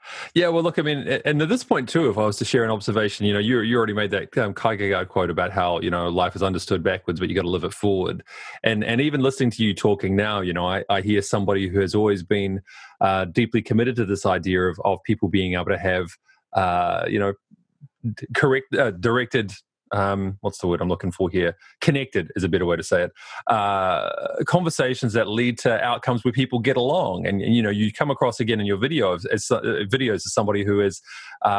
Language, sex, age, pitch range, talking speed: English, male, 30-49, 100-130 Hz, 235 wpm